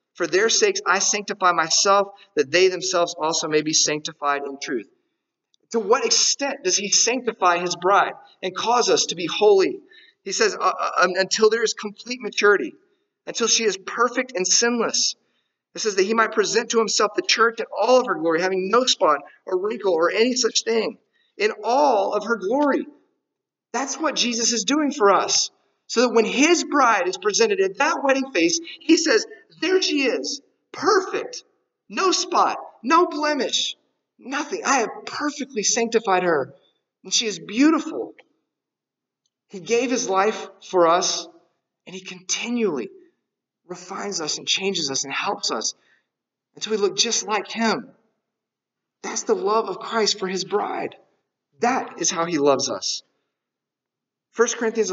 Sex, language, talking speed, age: male, English, 165 wpm, 40-59